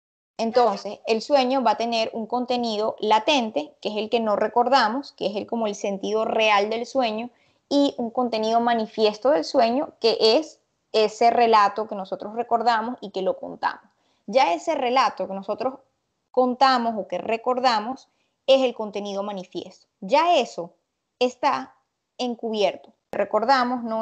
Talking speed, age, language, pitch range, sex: 150 wpm, 20-39, Spanish, 210-260 Hz, female